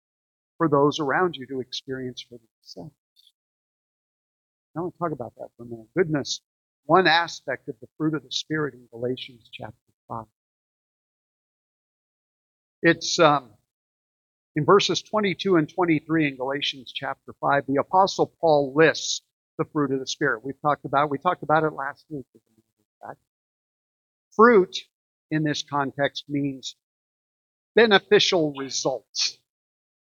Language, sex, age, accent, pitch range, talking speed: English, male, 50-69, American, 130-170 Hz, 135 wpm